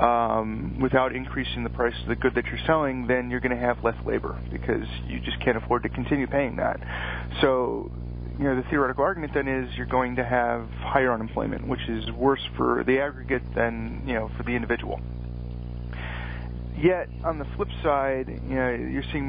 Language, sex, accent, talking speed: English, male, American, 195 wpm